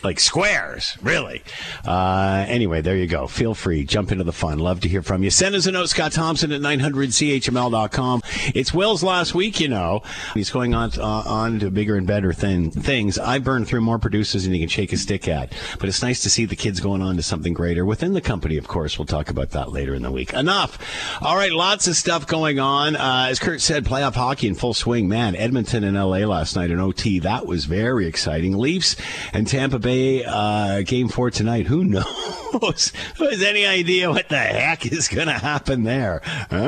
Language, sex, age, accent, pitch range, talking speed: English, male, 50-69, American, 100-150 Hz, 220 wpm